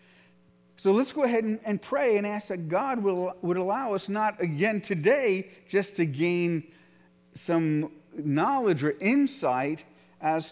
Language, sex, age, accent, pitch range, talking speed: English, male, 50-69, American, 140-190 Hz, 150 wpm